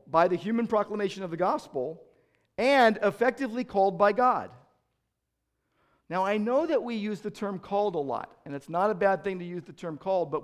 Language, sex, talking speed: English, male, 200 wpm